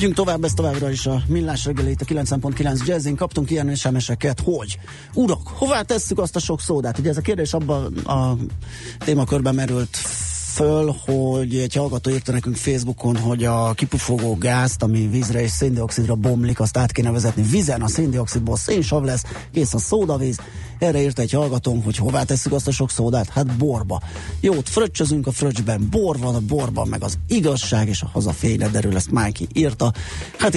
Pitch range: 115-140 Hz